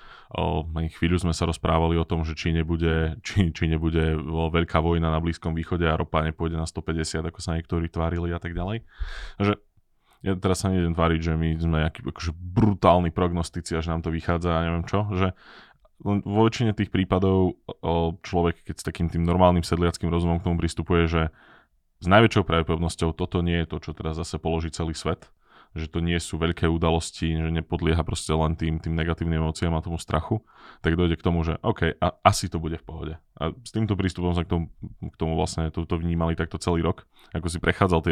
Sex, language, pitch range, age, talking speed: male, Slovak, 80-90 Hz, 20-39, 205 wpm